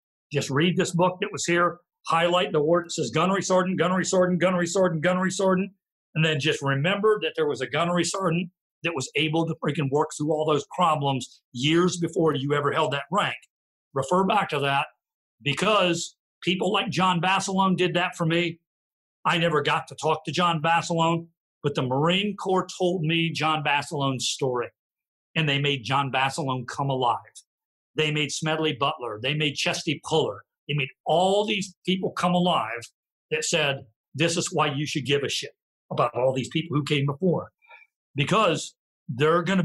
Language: English